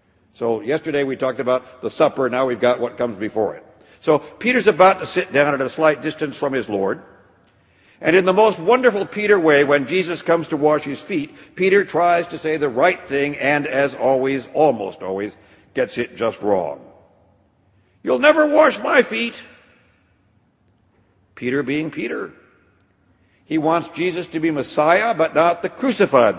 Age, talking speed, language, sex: 60-79, 170 wpm, English, male